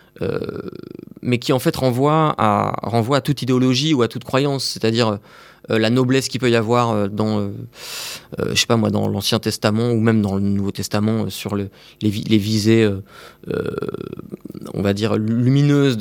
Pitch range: 105-130 Hz